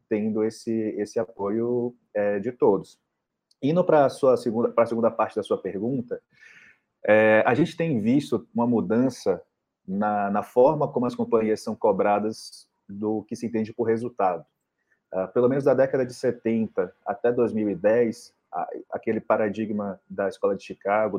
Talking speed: 145 wpm